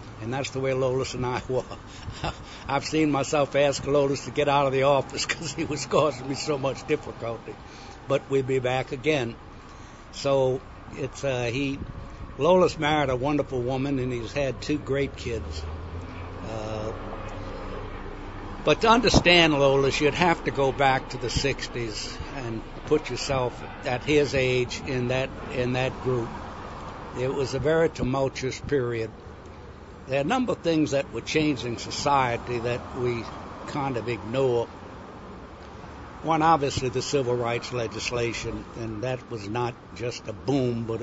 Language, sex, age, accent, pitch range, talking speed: English, male, 60-79, American, 115-140 Hz, 155 wpm